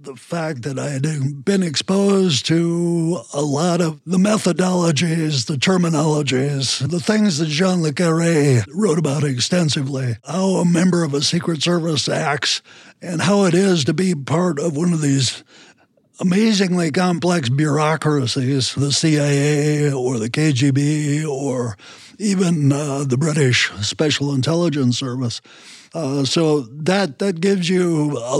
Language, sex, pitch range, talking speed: English, male, 135-170 Hz, 140 wpm